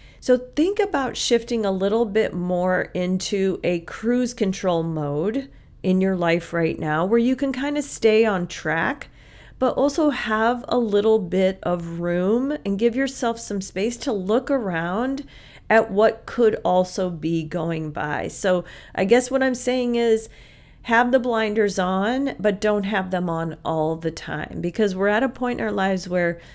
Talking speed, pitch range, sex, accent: 175 wpm, 175-235 Hz, female, American